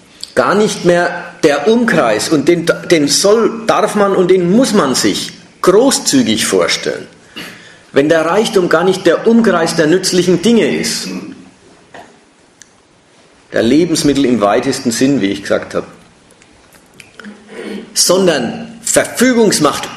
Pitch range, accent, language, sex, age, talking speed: 160-220 Hz, German, German, male, 50-69, 120 wpm